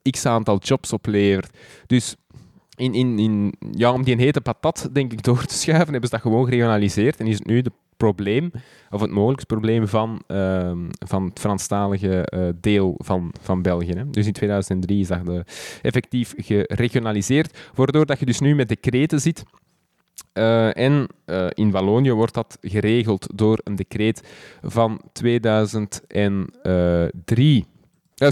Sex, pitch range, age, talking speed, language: male, 105-140 Hz, 20-39, 135 wpm, Dutch